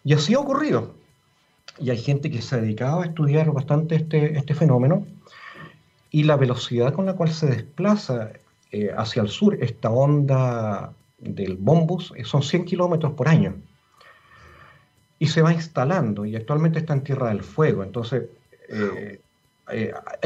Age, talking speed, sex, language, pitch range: 40-59, 150 wpm, male, Spanish, 125-160 Hz